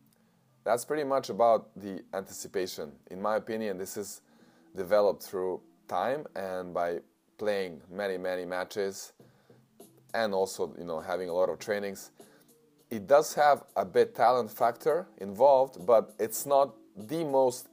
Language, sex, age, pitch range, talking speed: English, male, 20-39, 95-135 Hz, 140 wpm